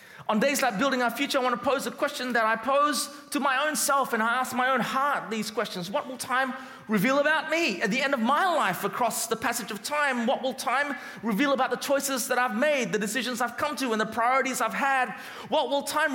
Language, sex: English, male